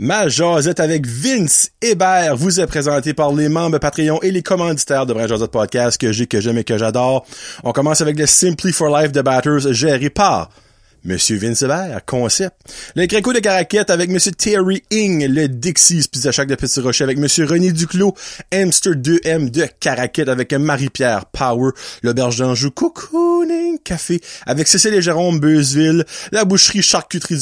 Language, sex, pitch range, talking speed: French, male, 130-185 Hz, 170 wpm